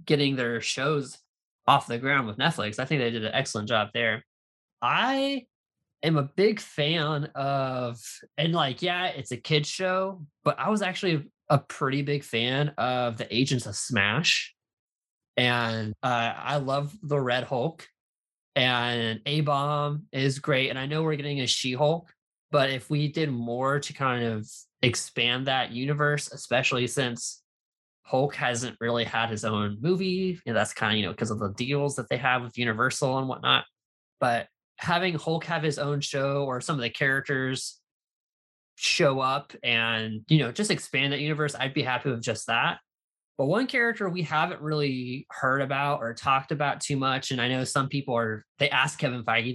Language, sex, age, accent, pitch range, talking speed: English, male, 20-39, American, 120-150 Hz, 180 wpm